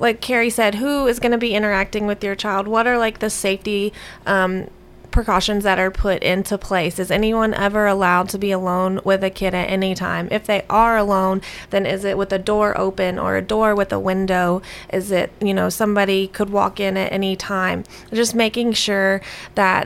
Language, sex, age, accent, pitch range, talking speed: English, female, 20-39, American, 185-205 Hz, 210 wpm